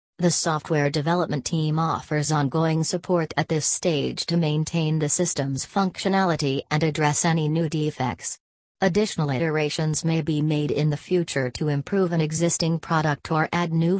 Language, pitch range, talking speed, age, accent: English, 145-170 Hz, 155 wpm, 40-59, American